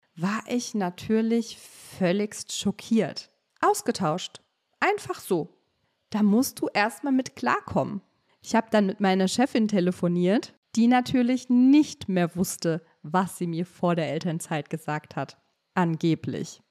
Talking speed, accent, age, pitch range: 125 wpm, German, 40-59, 185-245 Hz